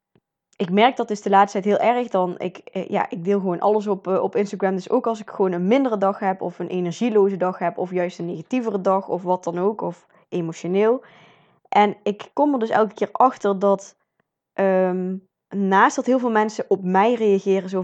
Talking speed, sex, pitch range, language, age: 215 wpm, female, 185-215 Hz, Dutch, 20-39